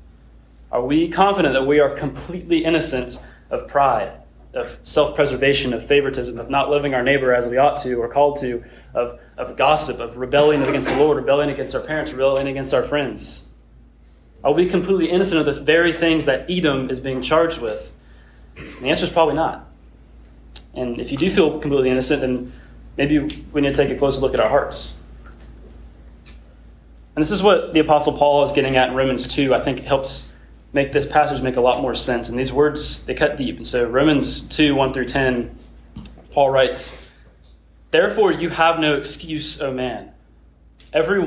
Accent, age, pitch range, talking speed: American, 20-39, 120-155 Hz, 190 wpm